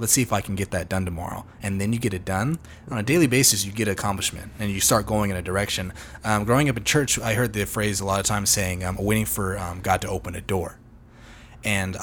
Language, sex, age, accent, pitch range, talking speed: English, male, 20-39, American, 95-115 Hz, 270 wpm